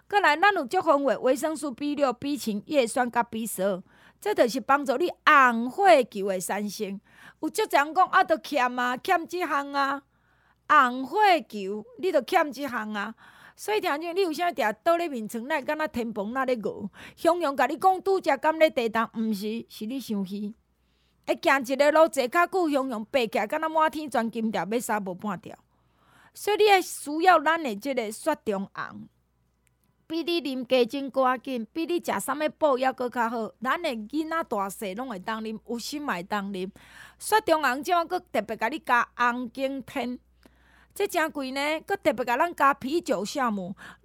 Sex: female